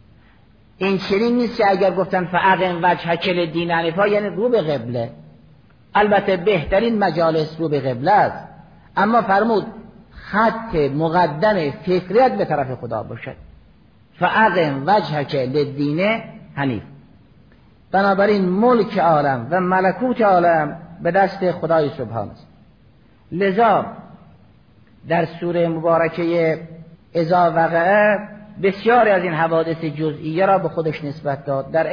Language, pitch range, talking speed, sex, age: Persian, 140-190 Hz, 110 wpm, male, 50-69